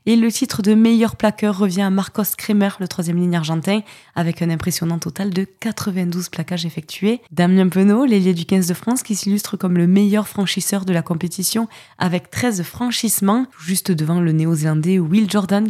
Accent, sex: French, female